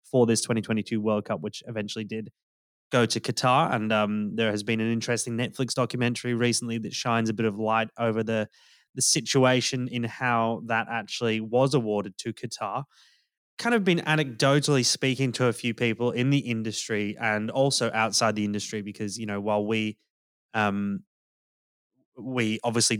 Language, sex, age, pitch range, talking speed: English, male, 20-39, 105-125 Hz, 165 wpm